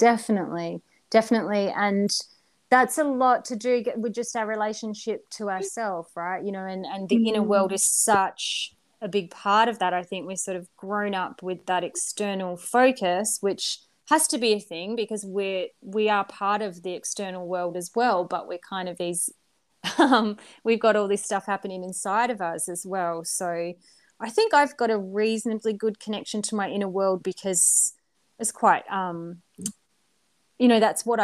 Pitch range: 185-225 Hz